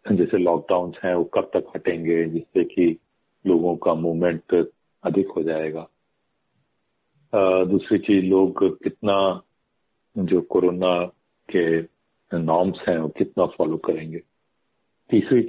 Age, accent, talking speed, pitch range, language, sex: 50-69, native, 110 wpm, 90-125 Hz, Hindi, male